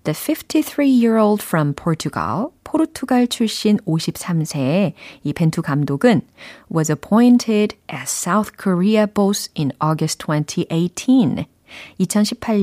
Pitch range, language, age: 160-225 Hz, Korean, 40-59